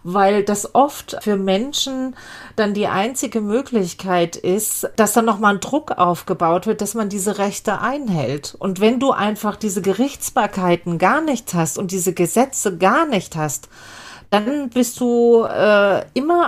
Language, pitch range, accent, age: German, 185-230 Hz, German, 40-59